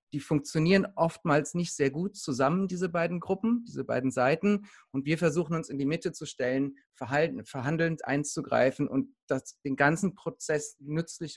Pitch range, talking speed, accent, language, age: 130-160 Hz, 155 wpm, German, German, 40-59